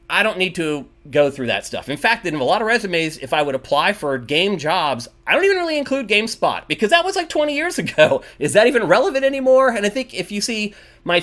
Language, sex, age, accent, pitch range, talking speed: English, male, 30-49, American, 135-200 Hz, 250 wpm